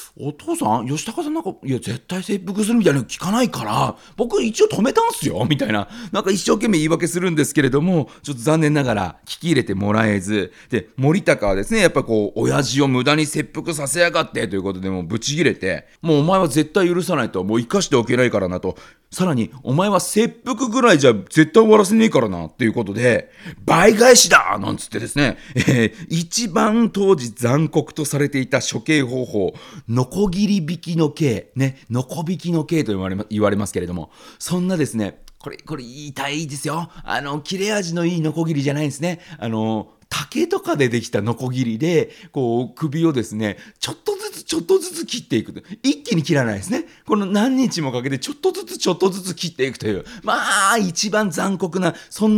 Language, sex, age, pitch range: Japanese, male, 40-59, 115-195 Hz